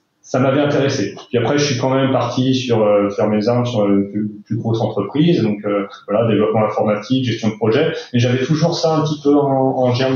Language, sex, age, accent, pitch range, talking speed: French, male, 30-49, French, 110-130 Hz, 230 wpm